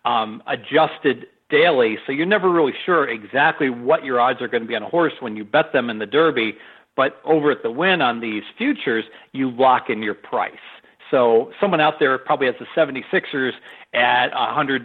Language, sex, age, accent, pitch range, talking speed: English, male, 50-69, American, 120-155 Hz, 200 wpm